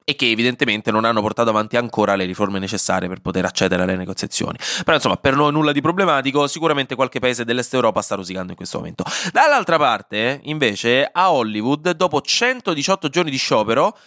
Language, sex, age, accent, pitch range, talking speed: Italian, male, 20-39, native, 115-180 Hz, 185 wpm